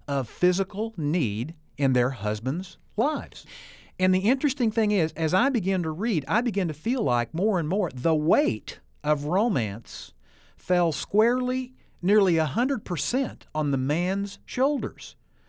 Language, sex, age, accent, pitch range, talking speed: English, male, 50-69, American, 145-200 Hz, 145 wpm